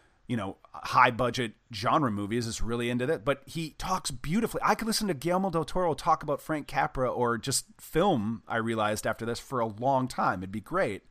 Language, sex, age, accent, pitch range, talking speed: English, male, 30-49, American, 115-150 Hz, 210 wpm